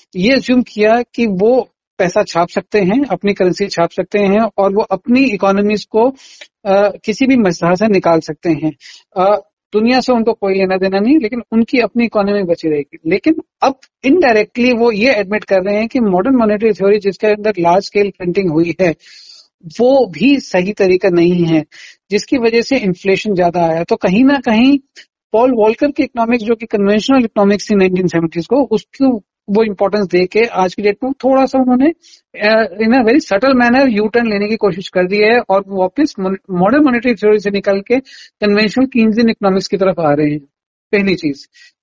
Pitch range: 190-245 Hz